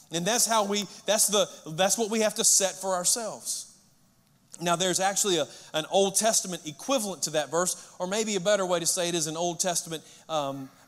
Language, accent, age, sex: English, American, 40-59, male